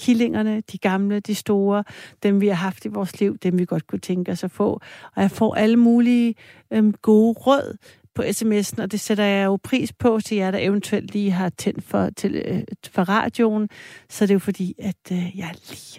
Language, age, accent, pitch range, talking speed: Danish, 60-79, native, 185-220 Hz, 220 wpm